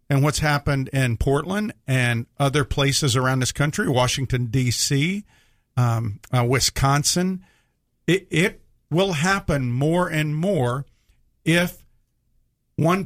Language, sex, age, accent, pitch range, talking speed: English, male, 50-69, American, 125-155 Hz, 110 wpm